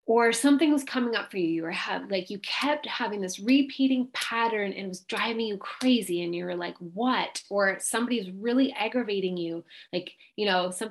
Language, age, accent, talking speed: English, 20-39, American, 210 wpm